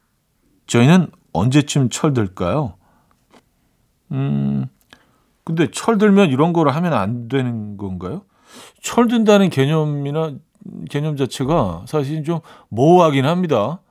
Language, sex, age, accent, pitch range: Korean, male, 40-59, native, 120-165 Hz